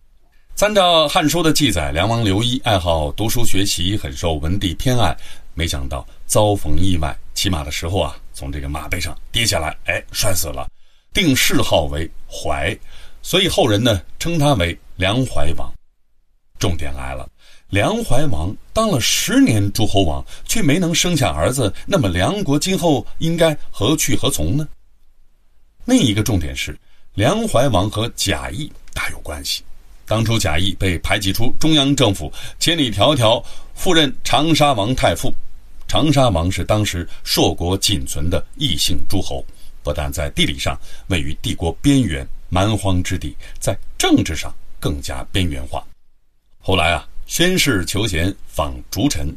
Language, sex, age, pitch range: Chinese, male, 30-49, 75-110 Hz